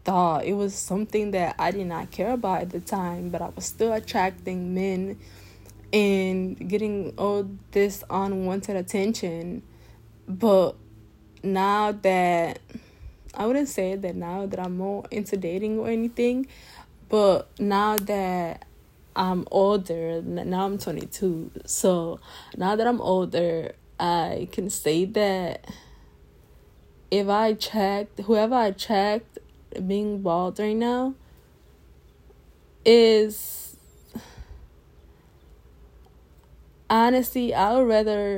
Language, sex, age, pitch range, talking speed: English, female, 10-29, 170-205 Hz, 110 wpm